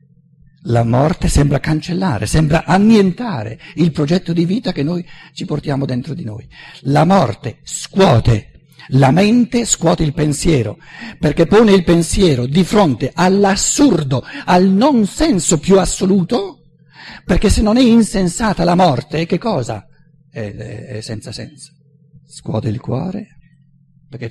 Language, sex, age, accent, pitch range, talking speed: Italian, male, 50-69, native, 125-170 Hz, 130 wpm